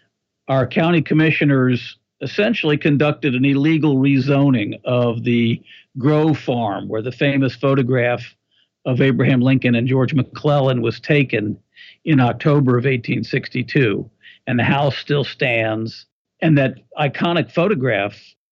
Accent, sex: American, male